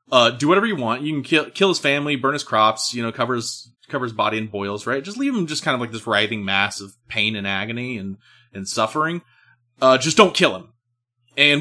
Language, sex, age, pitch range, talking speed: English, male, 30-49, 115-170 Hz, 240 wpm